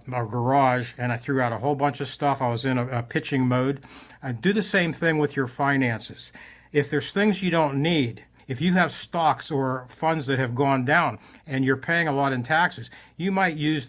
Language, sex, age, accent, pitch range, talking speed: English, male, 60-79, American, 130-160 Hz, 220 wpm